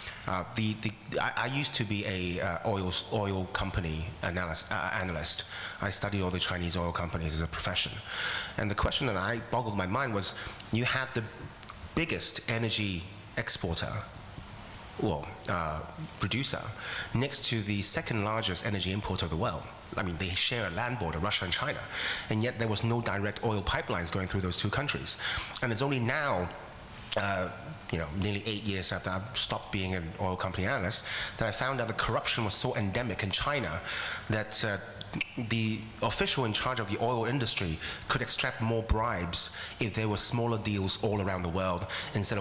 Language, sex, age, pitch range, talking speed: English, male, 30-49, 95-120 Hz, 175 wpm